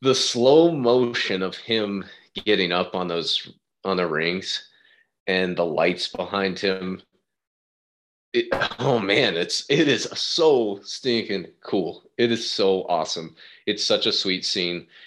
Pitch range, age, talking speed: 90-110 Hz, 30-49, 140 wpm